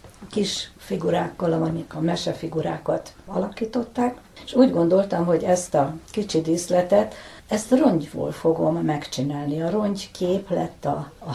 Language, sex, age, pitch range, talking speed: Hungarian, female, 60-79, 155-195 Hz, 130 wpm